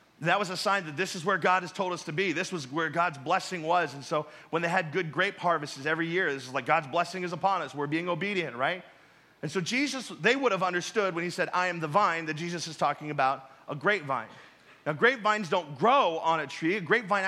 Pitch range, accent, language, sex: 165-210 Hz, American, English, male